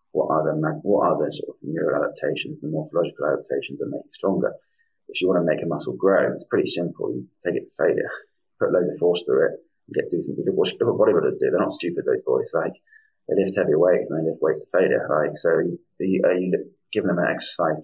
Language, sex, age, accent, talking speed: English, male, 20-39, British, 260 wpm